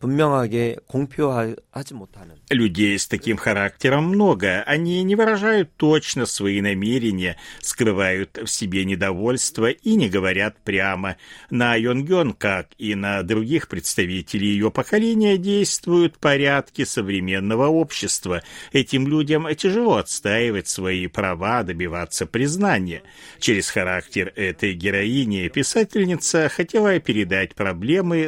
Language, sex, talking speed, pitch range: Russian, male, 100 wpm, 95-145 Hz